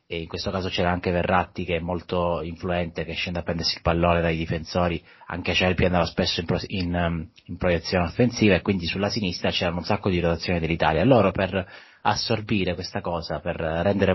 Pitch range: 90-110 Hz